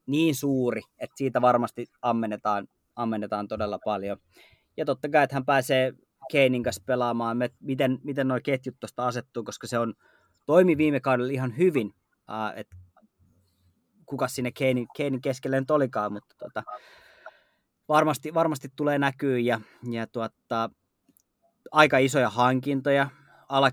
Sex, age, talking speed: male, 20-39, 125 wpm